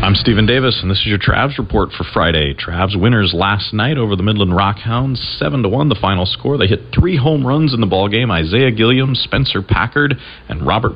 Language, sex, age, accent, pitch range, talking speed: English, male, 40-59, American, 90-115 Hz, 210 wpm